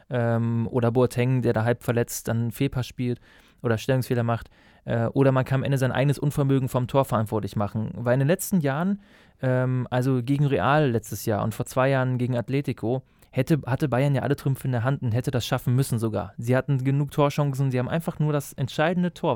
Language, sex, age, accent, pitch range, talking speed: German, male, 20-39, German, 115-145 Hz, 215 wpm